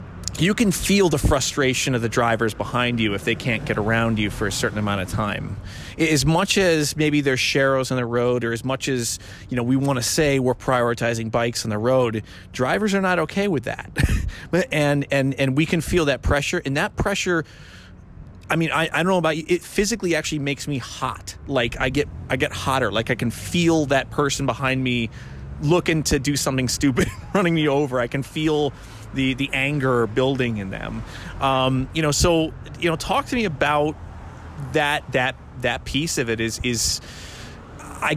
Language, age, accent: English, 30-49, American